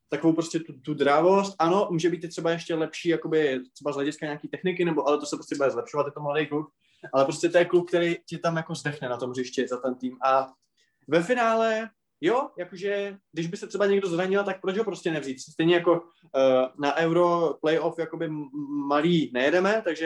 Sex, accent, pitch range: male, native, 145-190 Hz